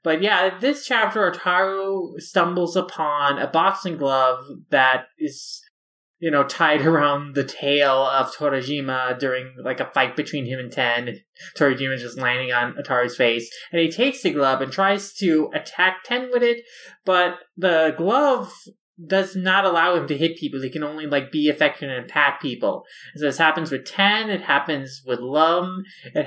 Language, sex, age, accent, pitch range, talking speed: English, male, 20-39, American, 140-190 Hz, 175 wpm